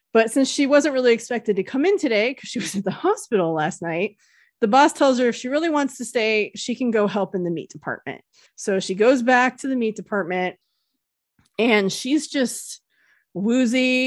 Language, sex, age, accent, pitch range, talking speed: English, female, 20-39, American, 185-245 Hz, 205 wpm